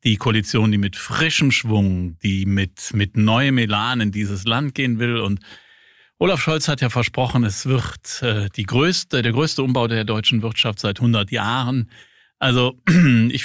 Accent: German